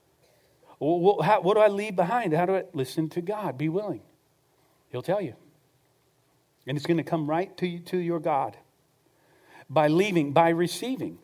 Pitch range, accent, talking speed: 150-190 Hz, American, 160 wpm